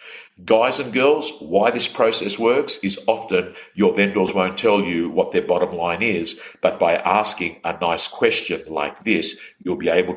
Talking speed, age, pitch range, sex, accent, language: 175 wpm, 50-69, 95-110 Hz, male, Australian, English